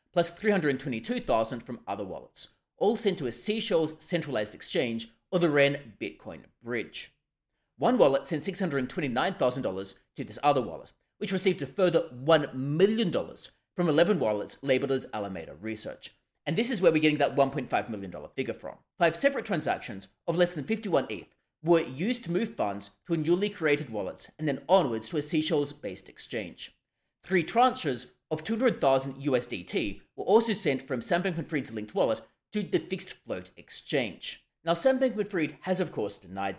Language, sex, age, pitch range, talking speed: English, male, 30-49, 125-185 Hz, 165 wpm